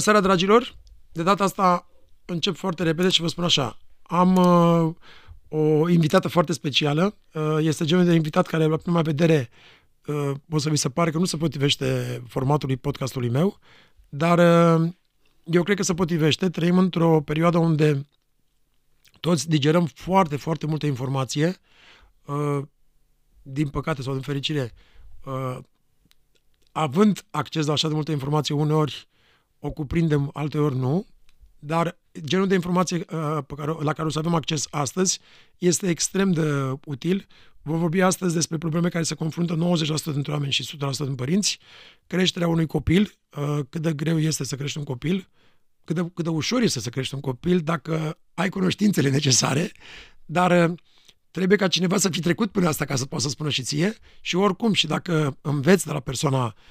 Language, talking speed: Romanian, 170 wpm